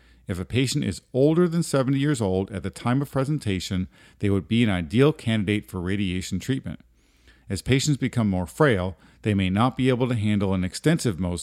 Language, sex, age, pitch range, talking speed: English, male, 50-69, 95-130 Hz, 200 wpm